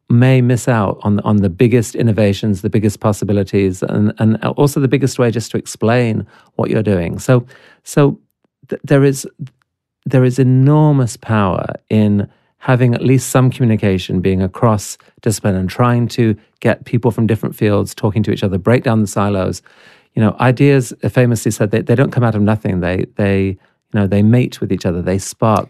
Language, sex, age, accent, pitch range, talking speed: English, male, 40-59, British, 100-120 Hz, 185 wpm